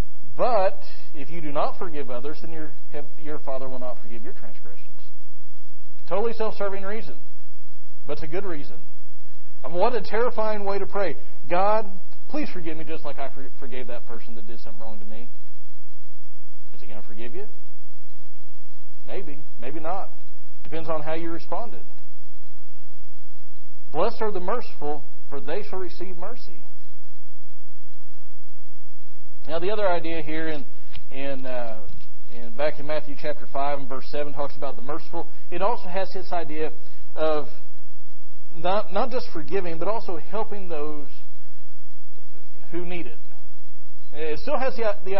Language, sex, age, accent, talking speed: English, male, 40-59, American, 150 wpm